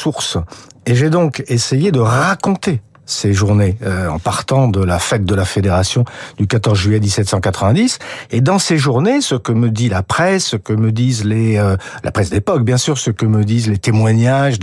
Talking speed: 195 wpm